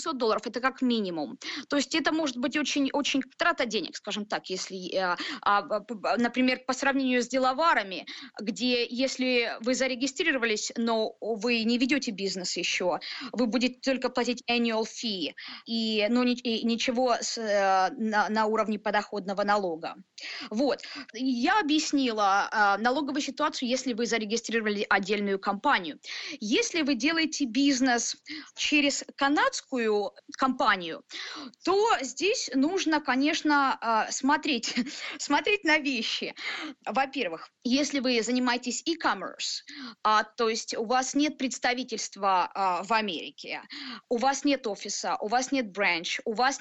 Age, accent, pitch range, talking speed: 20-39, native, 225-280 Hz, 120 wpm